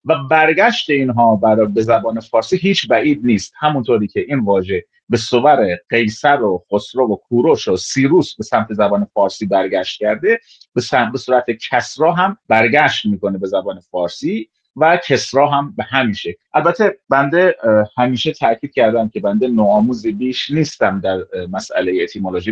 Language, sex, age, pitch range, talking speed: Persian, male, 30-49, 105-160 Hz, 155 wpm